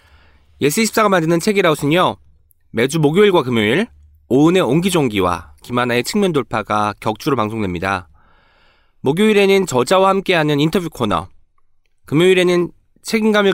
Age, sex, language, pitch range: 20-39, male, Korean, 120-195 Hz